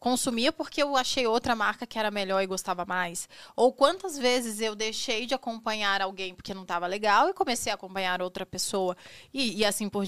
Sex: female